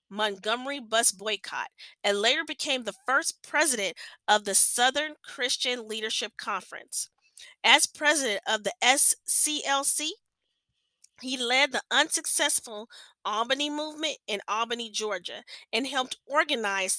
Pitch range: 205-275 Hz